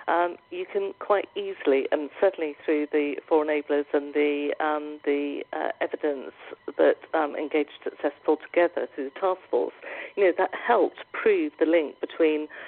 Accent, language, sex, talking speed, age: British, English, female, 160 wpm, 50-69